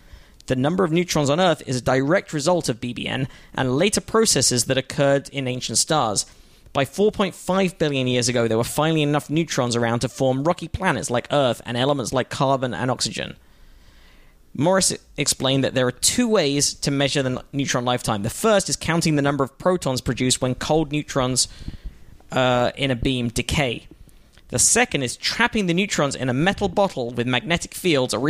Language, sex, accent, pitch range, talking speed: English, male, British, 125-155 Hz, 180 wpm